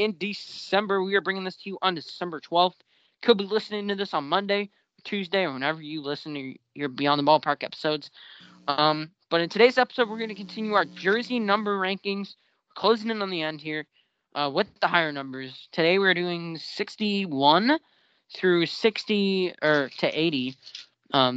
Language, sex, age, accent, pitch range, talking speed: English, male, 20-39, American, 145-200 Hz, 175 wpm